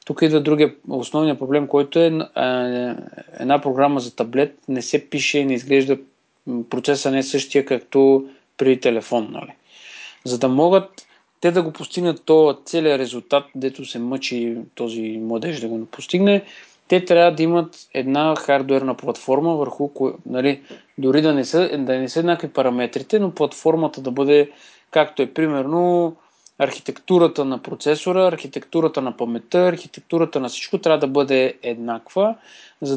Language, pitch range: Bulgarian, 130-170 Hz